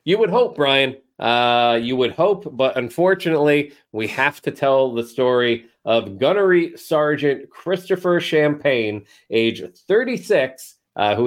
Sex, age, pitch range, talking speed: male, 40-59, 115-155 Hz, 135 wpm